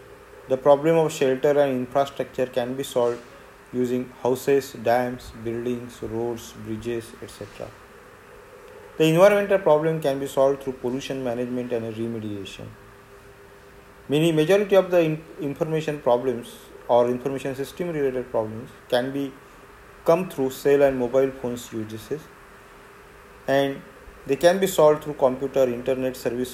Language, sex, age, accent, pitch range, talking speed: English, male, 40-59, Indian, 120-155 Hz, 125 wpm